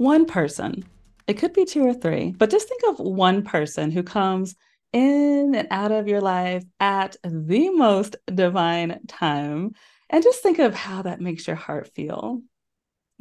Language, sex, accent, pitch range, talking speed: English, female, American, 175-240 Hz, 175 wpm